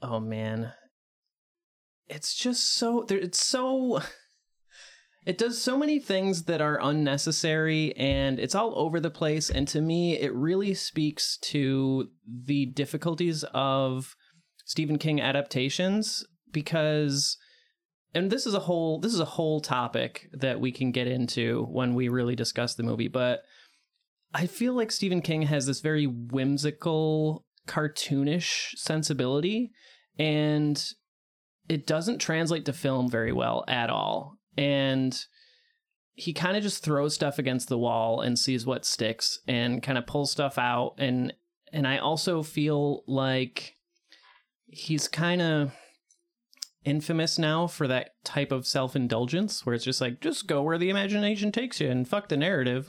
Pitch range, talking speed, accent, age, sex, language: 135-180 Hz, 145 wpm, American, 30-49, male, English